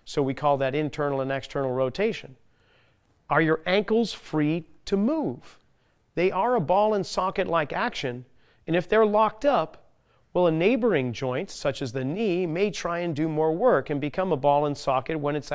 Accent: American